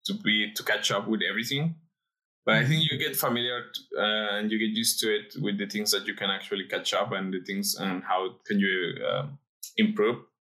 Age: 20-39